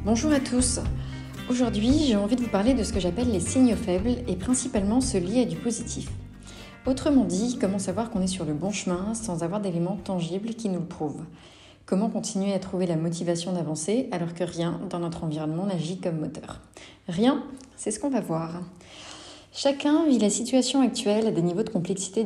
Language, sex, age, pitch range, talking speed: French, female, 30-49, 185-250 Hz, 195 wpm